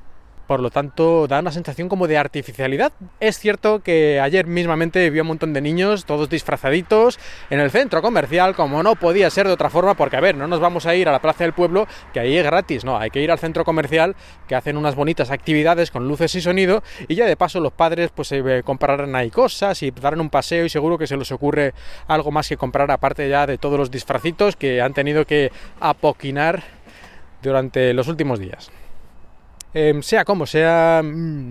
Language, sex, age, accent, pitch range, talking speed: Spanish, male, 20-39, Spanish, 140-175 Hz, 205 wpm